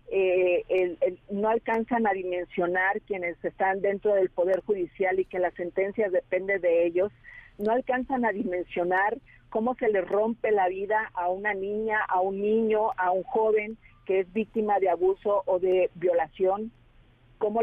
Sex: female